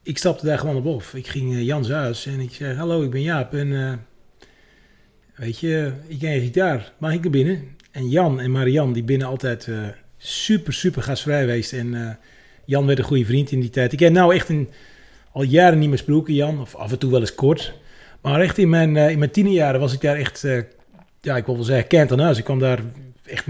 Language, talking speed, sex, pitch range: Dutch, 240 wpm, male, 125-155 Hz